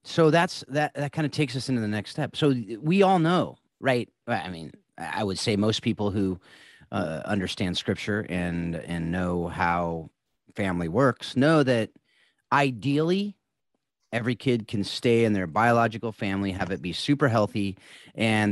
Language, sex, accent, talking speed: English, male, American, 165 wpm